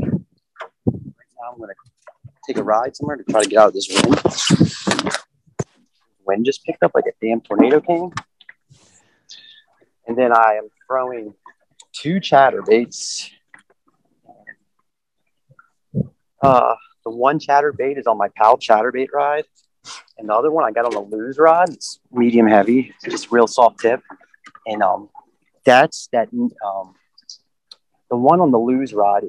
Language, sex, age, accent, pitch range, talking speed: English, male, 30-49, American, 110-180 Hz, 150 wpm